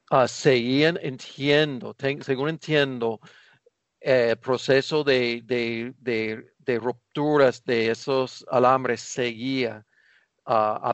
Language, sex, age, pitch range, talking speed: Spanish, male, 50-69, 115-135 Hz, 110 wpm